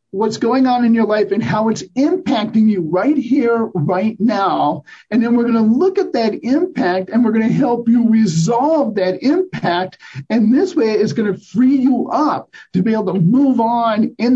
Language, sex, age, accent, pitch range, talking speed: English, male, 50-69, American, 210-260 Hz, 190 wpm